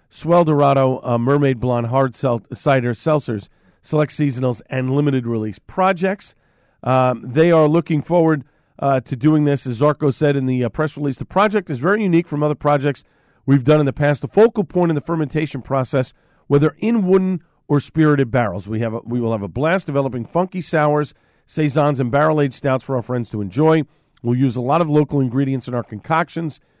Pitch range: 125-155 Hz